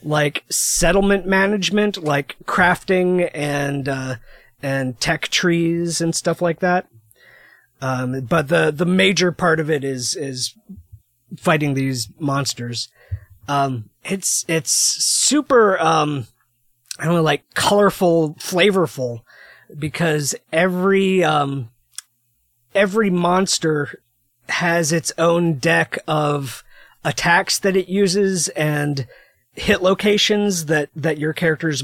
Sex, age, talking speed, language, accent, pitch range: male, 30-49, 110 wpm, English, American, 135-170 Hz